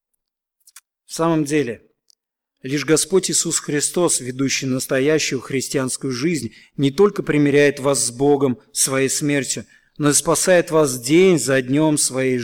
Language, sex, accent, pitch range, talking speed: Russian, male, native, 140-180 Hz, 130 wpm